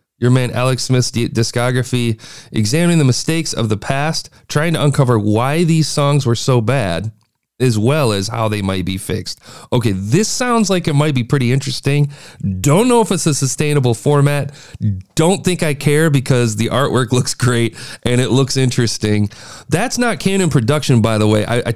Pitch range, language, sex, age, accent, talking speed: 110-155 Hz, English, male, 40-59, American, 180 wpm